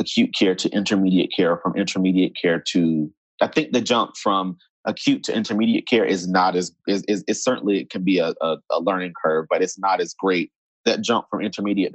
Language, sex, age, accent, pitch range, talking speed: English, male, 30-49, American, 95-140 Hz, 190 wpm